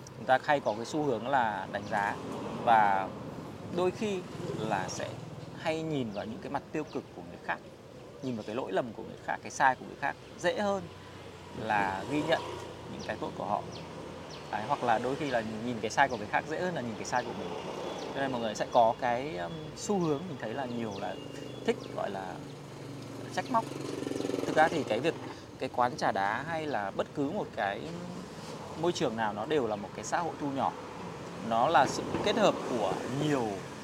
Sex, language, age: male, Vietnamese, 20-39